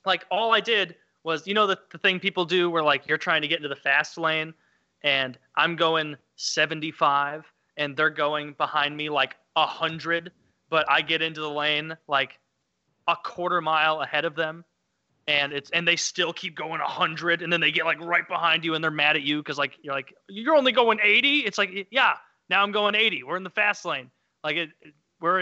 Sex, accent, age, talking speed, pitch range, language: male, American, 20-39, 215 wpm, 155-195 Hz, English